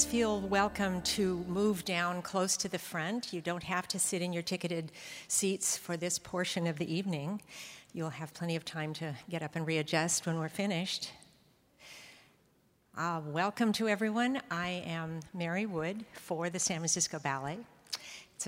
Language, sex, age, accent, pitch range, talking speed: English, female, 60-79, American, 165-190 Hz, 165 wpm